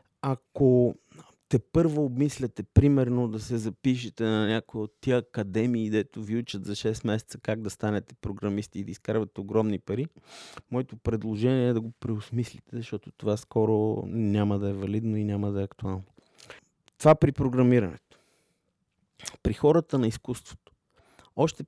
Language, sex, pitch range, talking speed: Bulgarian, male, 110-135 Hz, 150 wpm